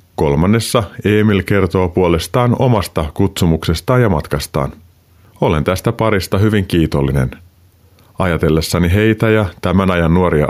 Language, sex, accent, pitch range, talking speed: Finnish, male, native, 85-110 Hz, 110 wpm